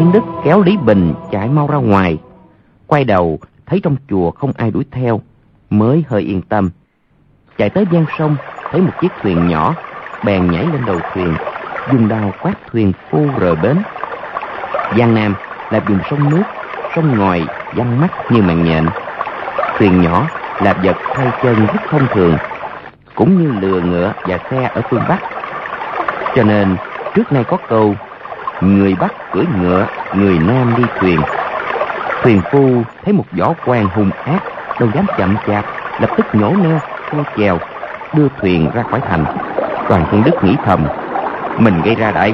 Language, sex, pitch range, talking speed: Vietnamese, male, 95-150 Hz, 170 wpm